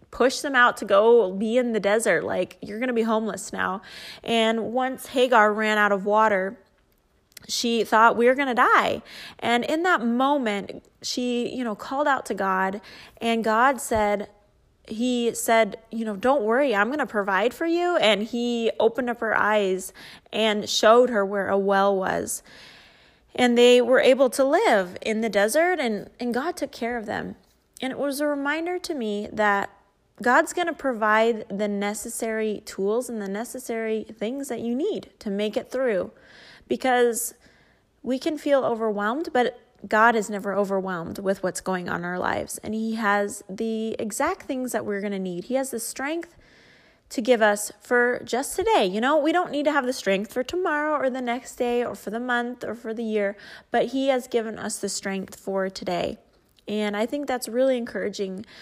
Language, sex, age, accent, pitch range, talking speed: English, female, 20-39, American, 210-255 Hz, 190 wpm